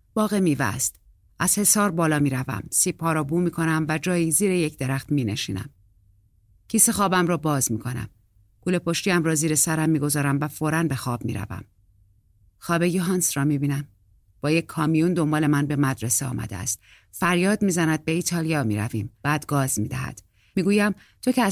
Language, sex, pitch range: Persian, female, 125-185 Hz